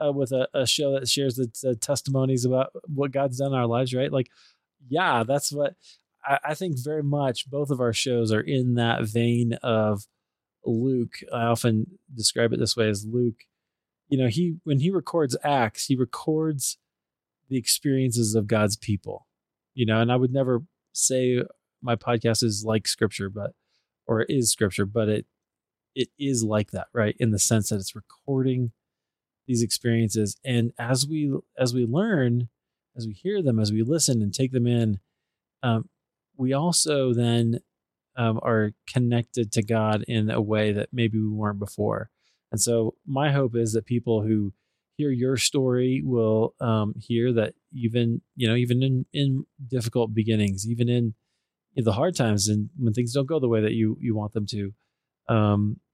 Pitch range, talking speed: 110-135 Hz, 180 wpm